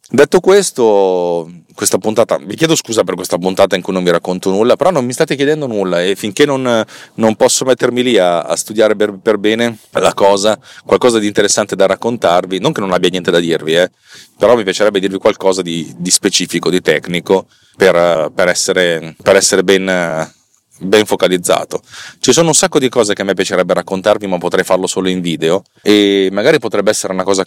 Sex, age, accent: male, 30-49, native